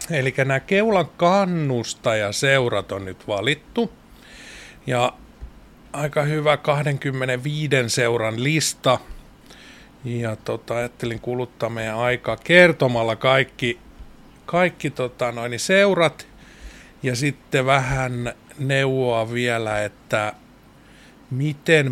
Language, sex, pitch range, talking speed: Finnish, male, 115-150 Hz, 85 wpm